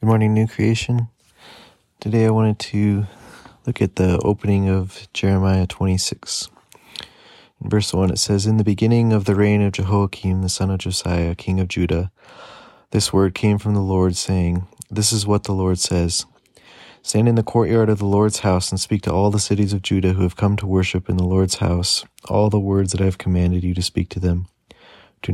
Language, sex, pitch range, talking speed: English, male, 90-105 Hz, 205 wpm